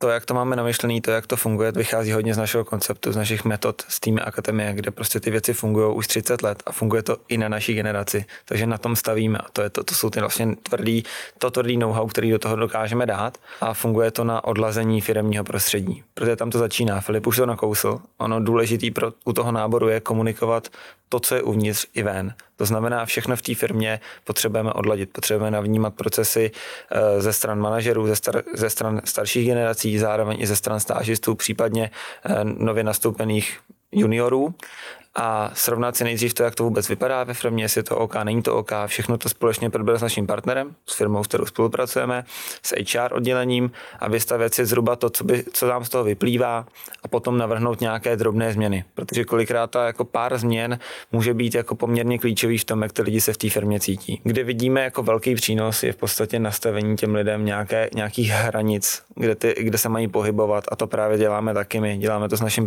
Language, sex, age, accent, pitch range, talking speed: Czech, male, 20-39, native, 110-120 Hz, 205 wpm